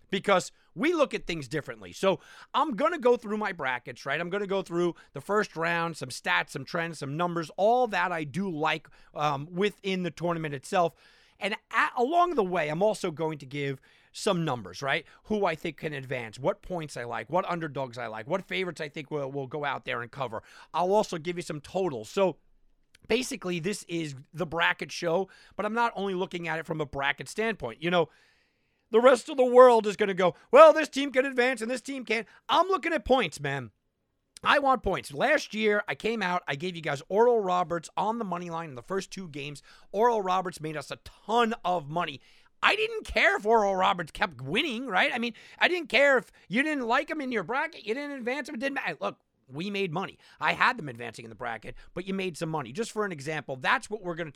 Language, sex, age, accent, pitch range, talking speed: English, male, 40-59, American, 155-220 Hz, 225 wpm